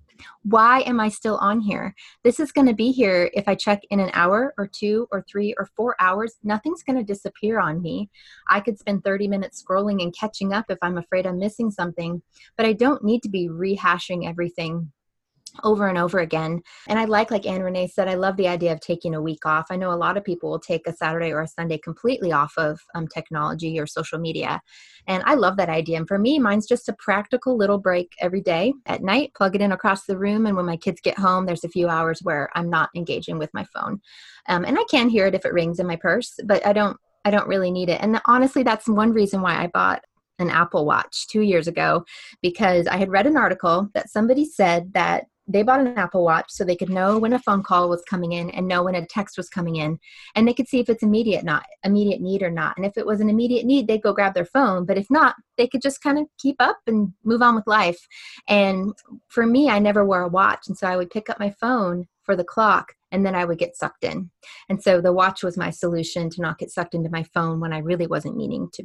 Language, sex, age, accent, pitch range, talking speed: English, female, 20-39, American, 175-220 Hz, 250 wpm